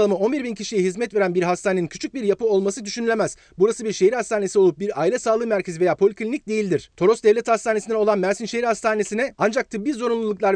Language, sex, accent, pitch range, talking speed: Turkish, male, native, 190-225 Hz, 190 wpm